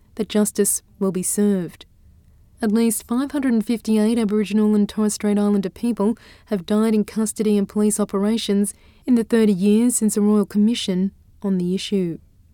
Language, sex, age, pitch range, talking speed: English, female, 20-39, 205-225 Hz, 155 wpm